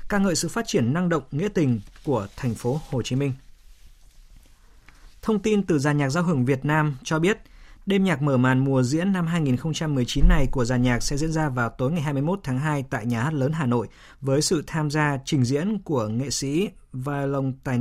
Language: Vietnamese